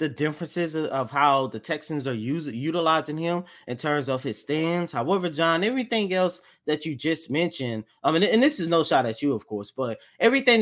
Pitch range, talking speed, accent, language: 140-190 Hz, 205 wpm, American, English